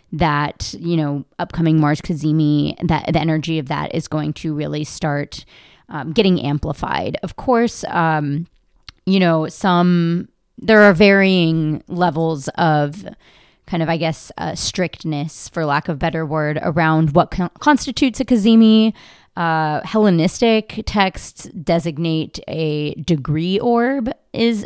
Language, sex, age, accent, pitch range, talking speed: English, female, 20-39, American, 155-190 Hz, 130 wpm